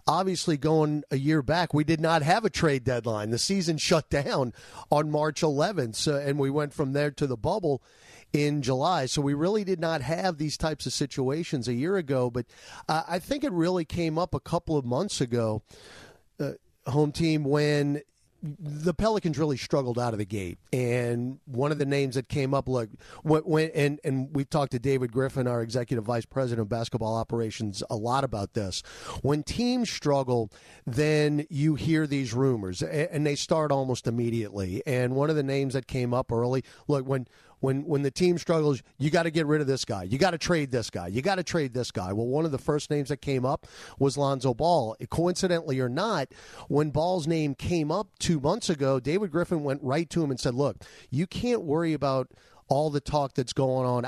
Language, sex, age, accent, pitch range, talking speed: English, male, 40-59, American, 125-155 Hz, 205 wpm